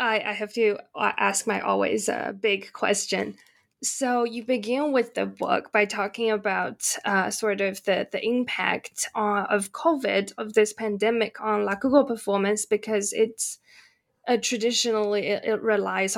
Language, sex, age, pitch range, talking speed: English, female, 10-29, 210-245 Hz, 150 wpm